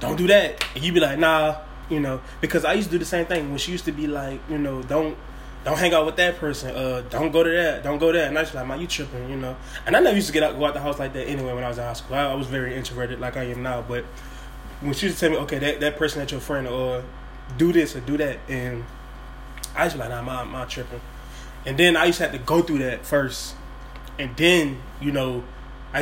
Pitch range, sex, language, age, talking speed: 130-155 Hz, male, English, 20-39, 285 wpm